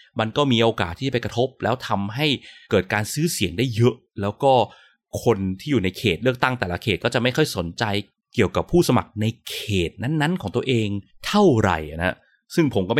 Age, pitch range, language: 20-39, 100-145 Hz, Thai